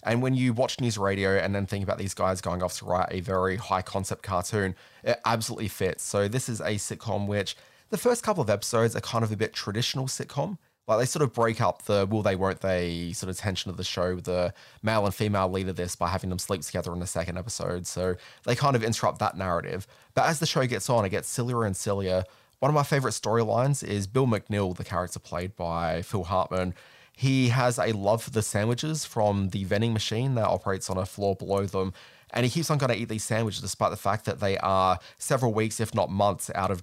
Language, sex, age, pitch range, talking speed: English, male, 20-39, 95-120 Hz, 235 wpm